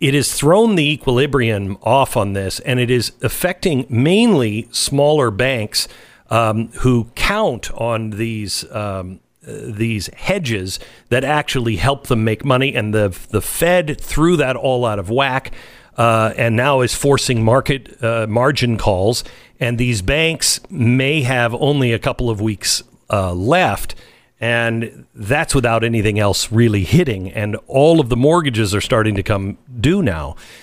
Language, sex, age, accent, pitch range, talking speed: English, male, 50-69, American, 110-140 Hz, 155 wpm